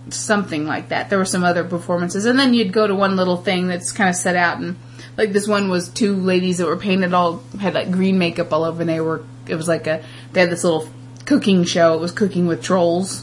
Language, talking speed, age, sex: English, 255 wpm, 20-39, female